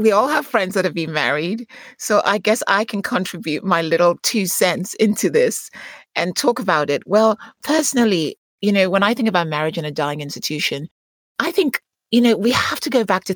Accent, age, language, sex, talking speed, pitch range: British, 30-49, English, female, 210 wpm, 150-205 Hz